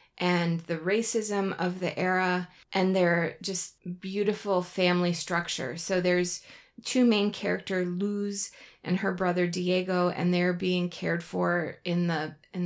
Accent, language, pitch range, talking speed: American, English, 170-195 Hz, 140 wpm